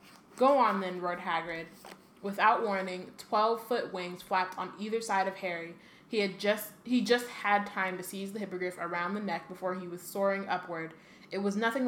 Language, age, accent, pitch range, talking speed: English, 20-39, American, 180-205 Hz, 175 wpm